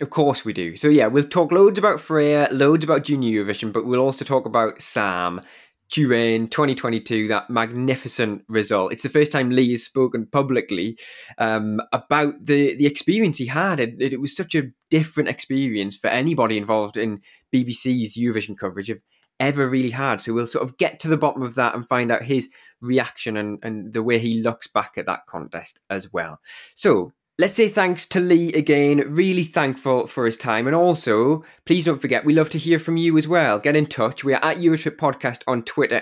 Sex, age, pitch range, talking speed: male, 20-39, 115-150 Hz, 200 wpm